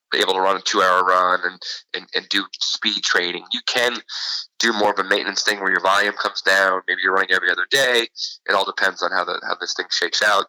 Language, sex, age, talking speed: English, male, 20-39, 245 wpm